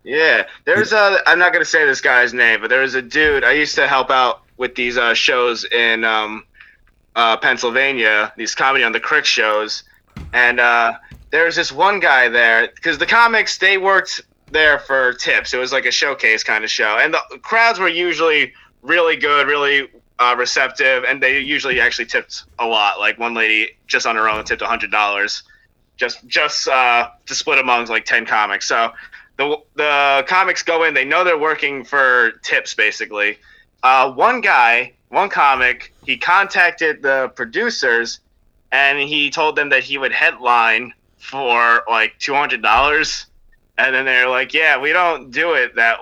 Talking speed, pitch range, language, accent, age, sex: 180 wpm, 115-150 Hz, English, American, 30-49, male